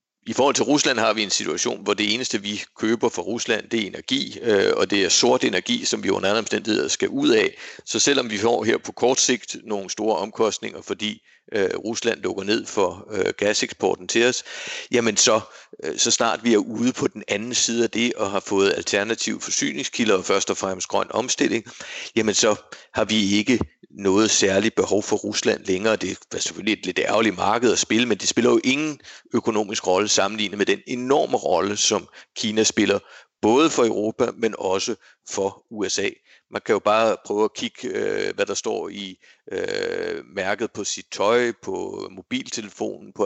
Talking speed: 185 wpm